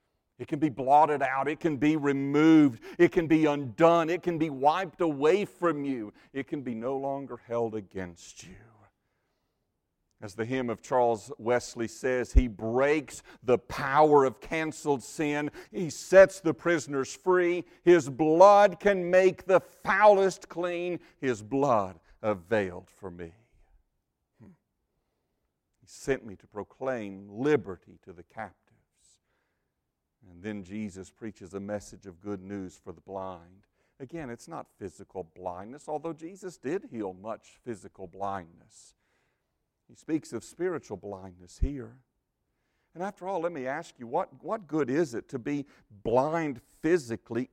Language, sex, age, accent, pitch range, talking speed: English, male, 50-69, American, 105-160 Hz, 145 wpm